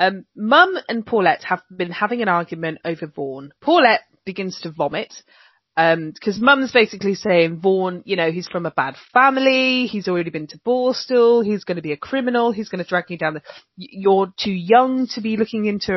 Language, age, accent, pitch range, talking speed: English, 30-49, British, 165-220 Hz, 200 wpm